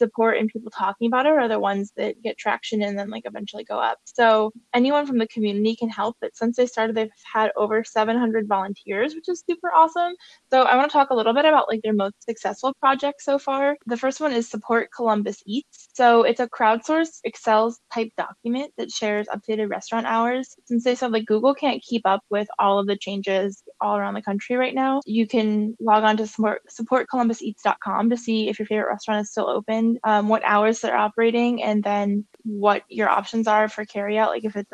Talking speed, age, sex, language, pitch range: 215 wpm, 10-29, female, English, 210-240 Hz